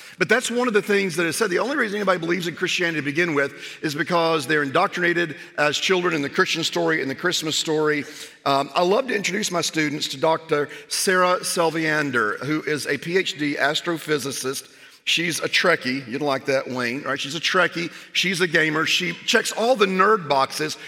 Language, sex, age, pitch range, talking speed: English, male, 40-59, 145-190 Hz, 200 wpm